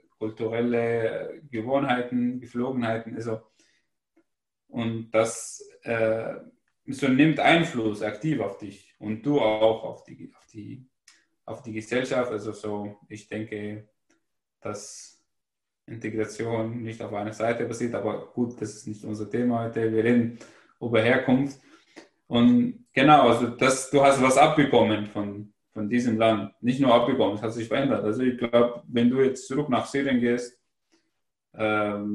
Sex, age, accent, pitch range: male, 20-39, German, 110-130 Hz